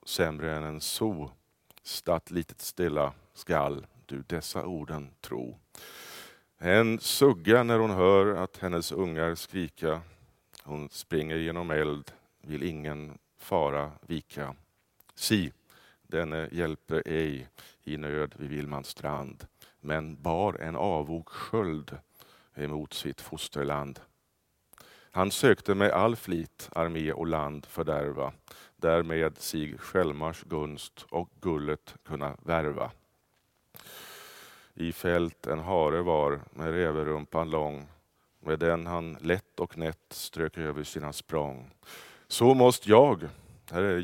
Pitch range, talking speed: 75-85 Hz, 115 wpm